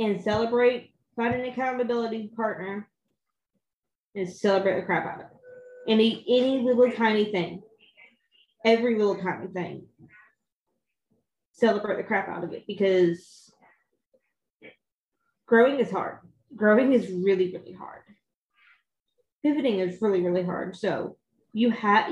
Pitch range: 190-235 Hz